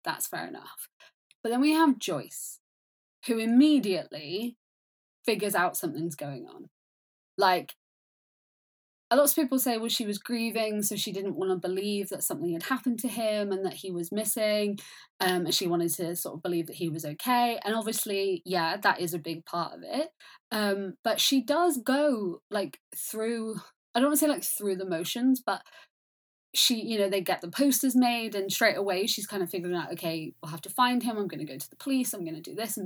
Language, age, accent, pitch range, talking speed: English, 20-39, British, 175-240 Hz, 210 wpm